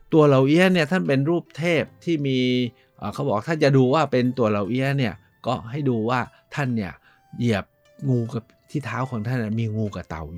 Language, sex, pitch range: Thai, male, 115-155 Hz